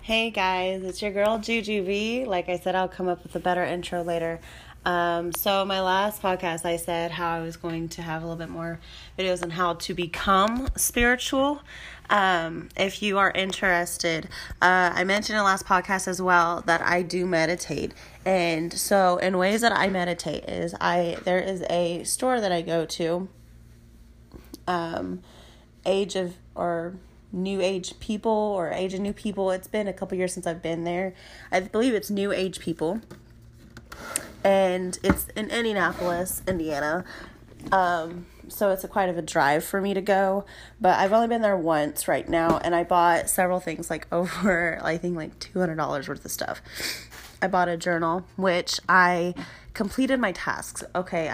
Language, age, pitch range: English, 20-39, 170-195 Hz